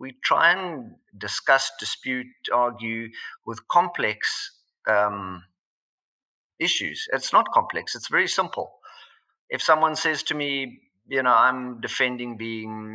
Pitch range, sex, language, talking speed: 115-155 Hz, male, English, 120 wpm